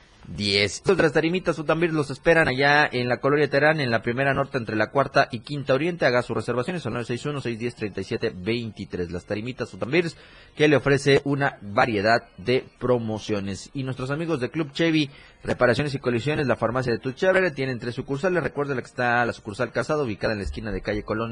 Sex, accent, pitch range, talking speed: male, Mexican, 105-140 Hz, 205 wpm